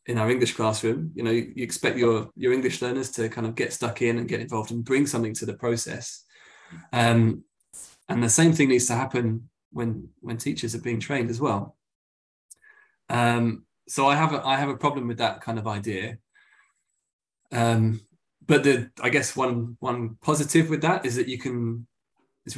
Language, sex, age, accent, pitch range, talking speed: English, male, 20-39, British, 115-130 Hz, 195 wpm